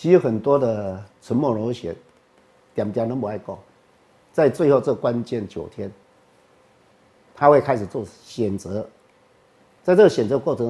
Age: 50-69